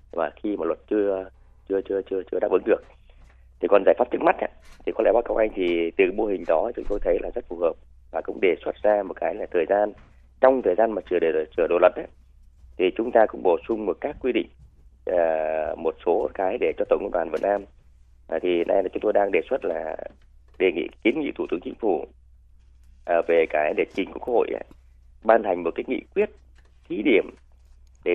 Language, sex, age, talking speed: Vietnamese, male, 20-39, 225 wpm